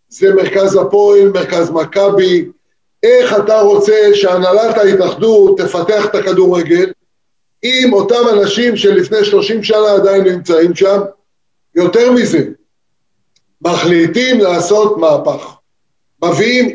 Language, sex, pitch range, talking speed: Hebrew, male, 185-230 Hz, 100 wpm